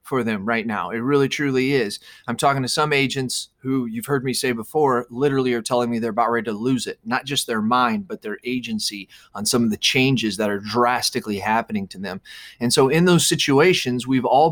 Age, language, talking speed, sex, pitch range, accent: 30-49, English, 225 wpm, male, 120-145 Hz, American